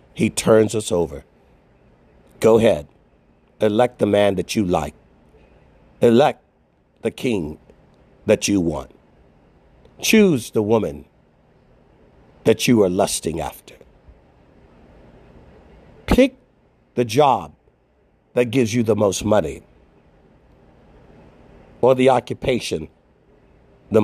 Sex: male